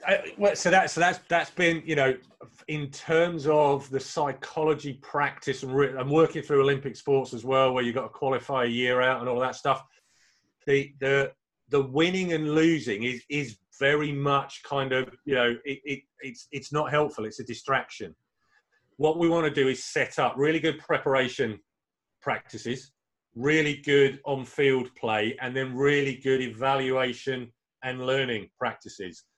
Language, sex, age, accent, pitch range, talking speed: English, male, 30-49, British, 130-150 Hz, 170 wpm